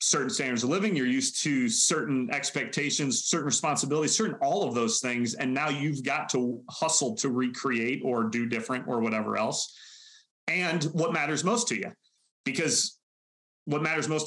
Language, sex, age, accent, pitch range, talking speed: English, male, 30-49, American, 120-155 Hz, 170 wpm